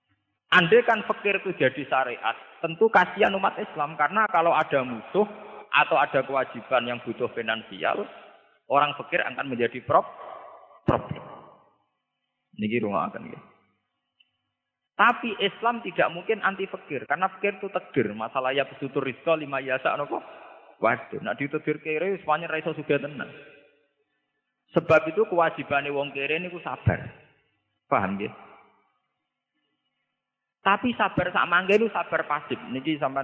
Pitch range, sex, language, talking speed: 125-190 Hz, male, Indonesian, 135 wpm